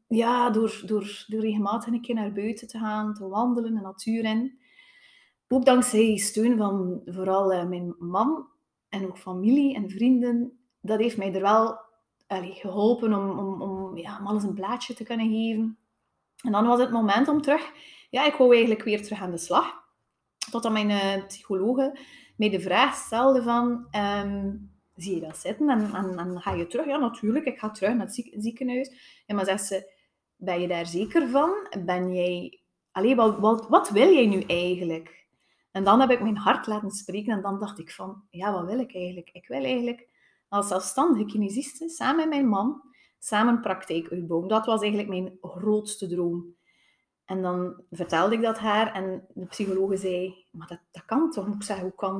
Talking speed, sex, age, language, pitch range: 185 wpm, female, 30-49, Dutch, 190-245 Hz